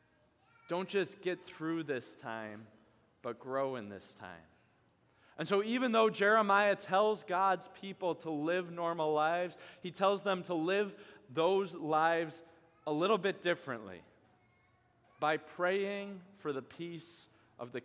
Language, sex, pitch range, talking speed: English, male, 115-170 Hz, 140 wpm